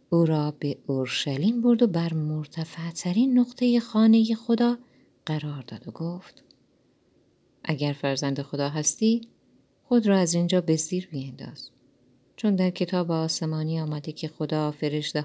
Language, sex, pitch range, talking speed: Persian, female, 145-220 Hz, 135 wpm